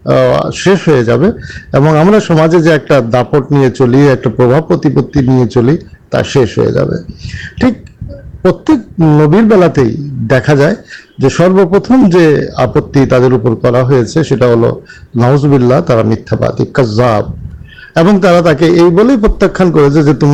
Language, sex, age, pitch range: Urdu, male, 50-69, 130-180 Hz